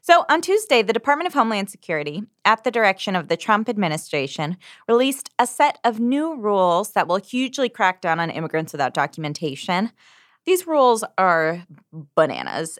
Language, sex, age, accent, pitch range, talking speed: English, female, 20-39, American, 155-220 Hz, 160 wpm